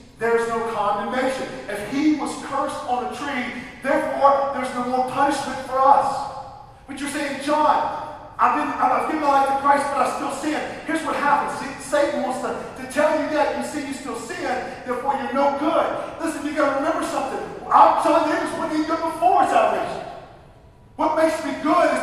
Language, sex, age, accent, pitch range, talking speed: English, male, 40-59, American, 230-285 Hz, 200 wpm